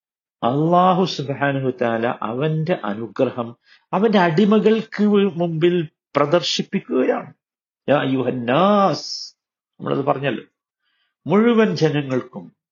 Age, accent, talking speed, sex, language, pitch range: 50-69, native, 60 wpm, male, Malayalam, 115-185 Hz